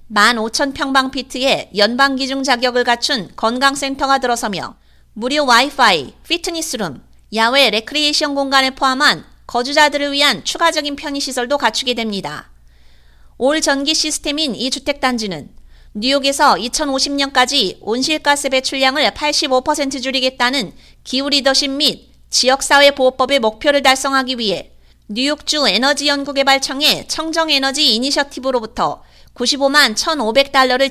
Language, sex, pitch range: Korean, female, 235-290 Hz